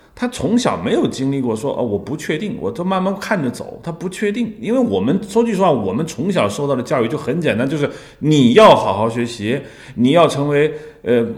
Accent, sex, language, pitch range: native, male, Chinese, 110-160 Hz